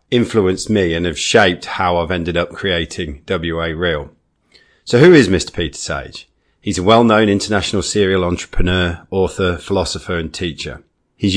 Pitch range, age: 85-105 Hz, 40-59